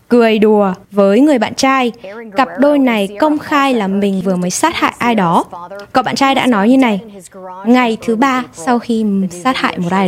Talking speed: 210 wpm